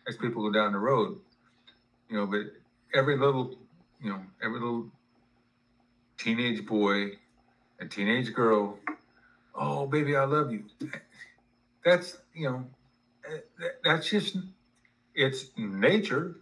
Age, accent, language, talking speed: 50-69, American, English, 115 wpm